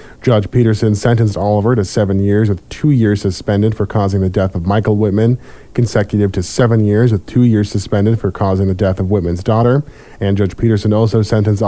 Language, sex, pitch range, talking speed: English, male, 100-120 Hz, 195 wpm